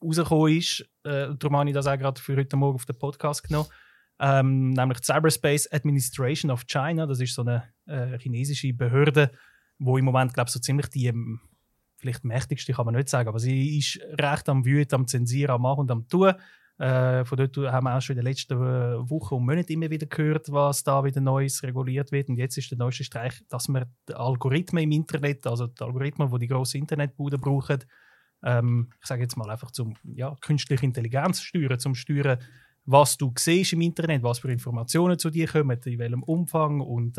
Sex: male